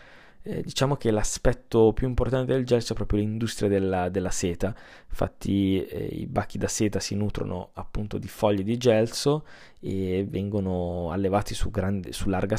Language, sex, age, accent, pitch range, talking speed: Italian, male, 20-39, native, 95-115 Hz, 155 wpm